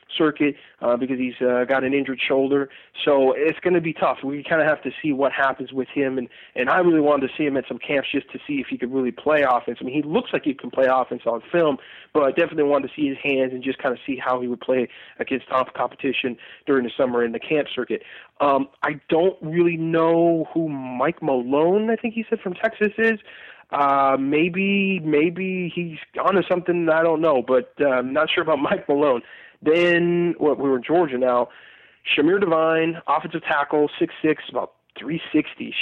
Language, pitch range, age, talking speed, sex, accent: English, 135-170 Hz, 20-39, 220 wpm, male, American